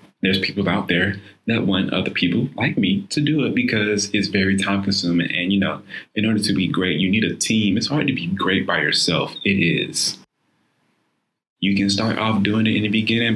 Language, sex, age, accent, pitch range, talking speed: English, male, 20-39, American, 95-105 Hz, 215 wpm